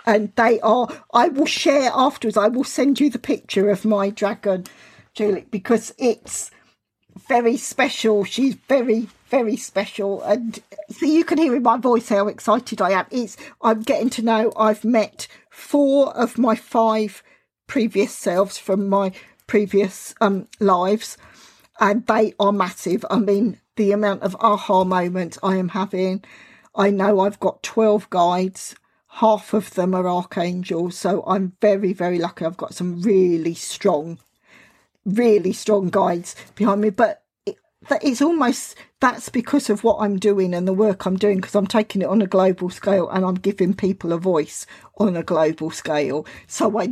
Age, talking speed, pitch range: 50-69, 170 wpm, 190-235 Hz